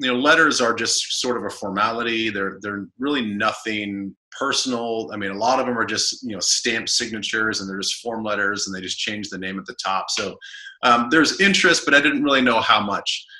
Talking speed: 230 wpm